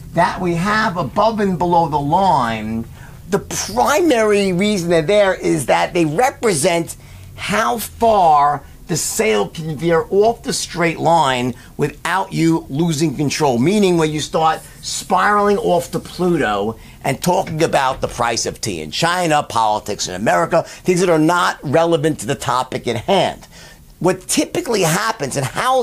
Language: English